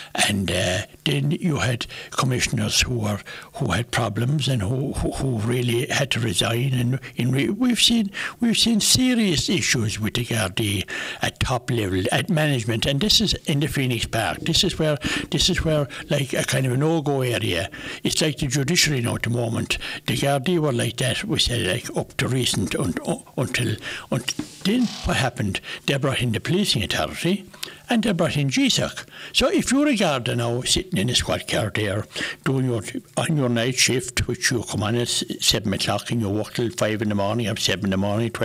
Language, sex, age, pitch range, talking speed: English, male, 60-79, 115-165 Hz, 210 wpm